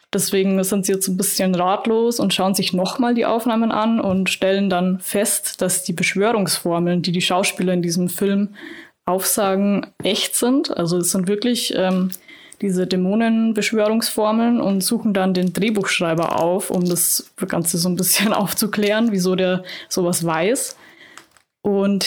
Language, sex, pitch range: German, female, 185-215 Hz